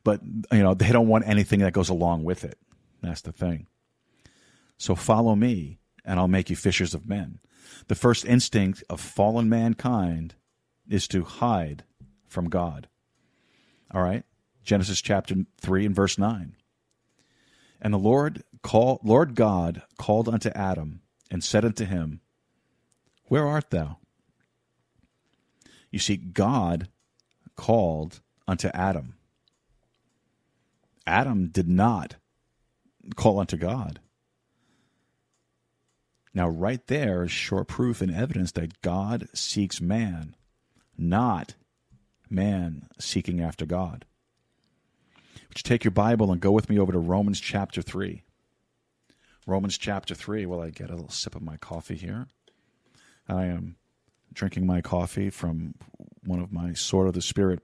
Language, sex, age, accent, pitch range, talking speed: English, male, 40-59, American, 85-105 Hz, 135 wpm